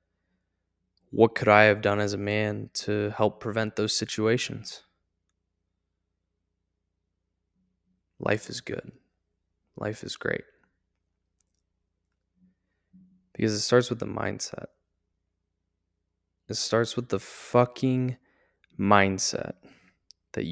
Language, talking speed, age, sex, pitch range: English, 95 wpm, 20-39, male, 85-115 Hz